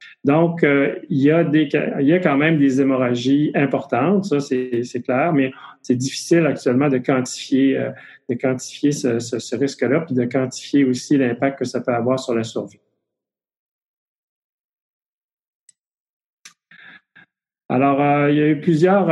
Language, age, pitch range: French, 40-59, 130-150 Hz